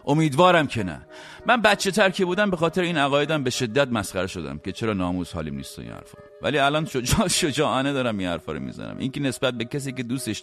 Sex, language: male, English